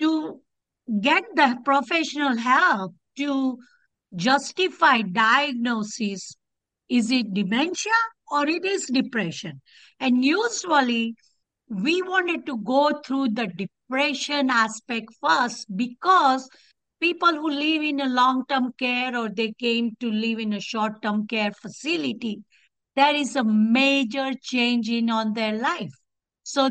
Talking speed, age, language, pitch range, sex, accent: 120 wpm, 60-79, English, 235-295 Hz, female, Indian